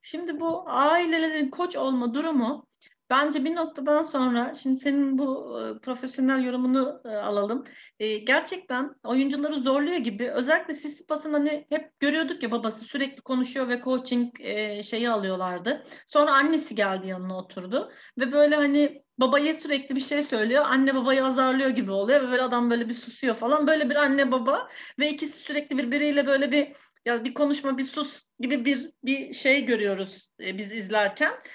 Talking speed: 160 wpm